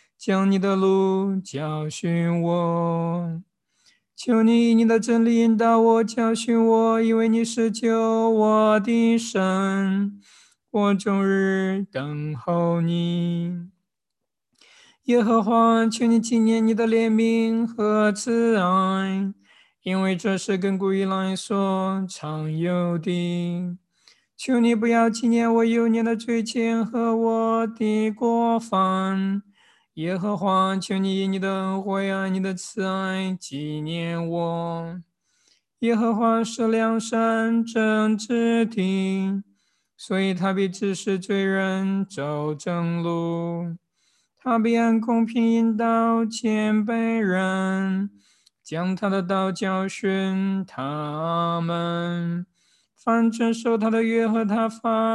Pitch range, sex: 190-225 Hz, male